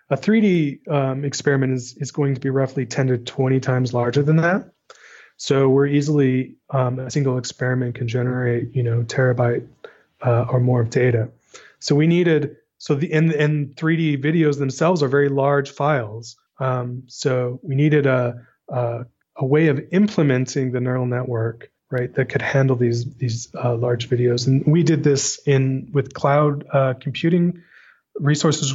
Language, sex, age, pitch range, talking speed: English, male, 30-49, 125-145 Hz, 165 wpm